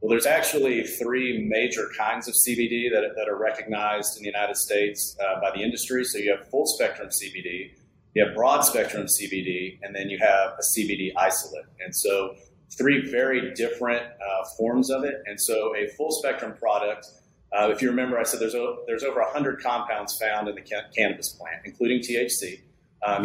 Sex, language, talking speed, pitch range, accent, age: male, English, 195 wpm, 105-130 Hz, American, 40-59